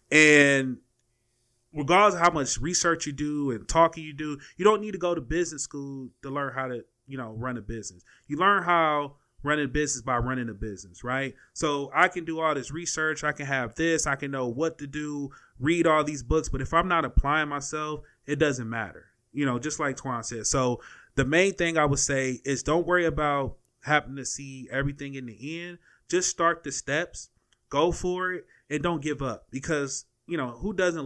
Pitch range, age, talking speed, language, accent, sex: 130-160 Hz, 30-49, 215 wpm, English, American, male